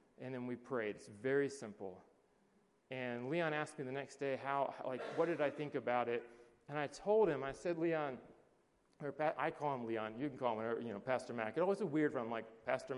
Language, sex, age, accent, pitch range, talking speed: English, male, 30-49, American, 125-165 Hz, 240 wpm